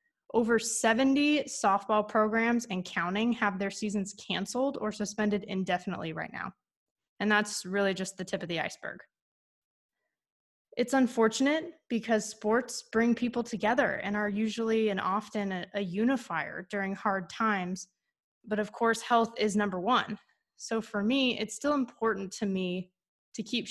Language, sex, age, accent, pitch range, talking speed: English, female, 20-39, American, 195-230 Hz, 145 wpm